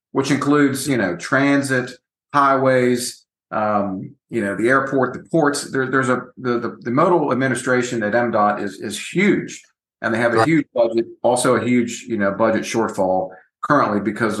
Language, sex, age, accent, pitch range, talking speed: English, male, 50-69, American, 105-130 Hz, 170 wpm